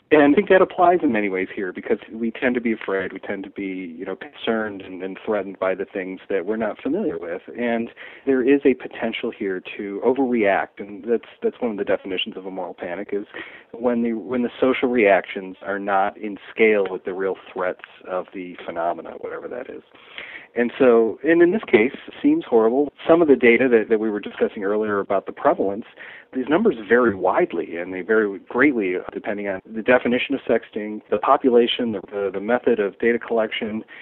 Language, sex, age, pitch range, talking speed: English, male, 40-59, 105-145 Hz, 210 wpm